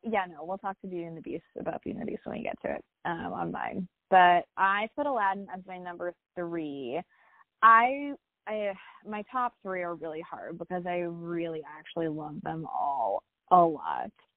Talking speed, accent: 195 wpm, American